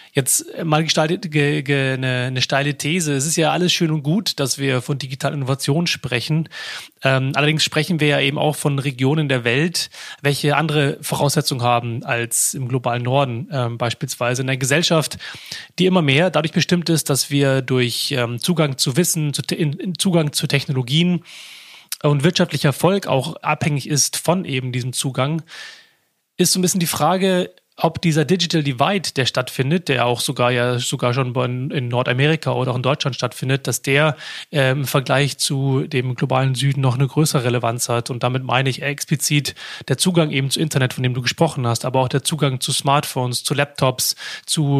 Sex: male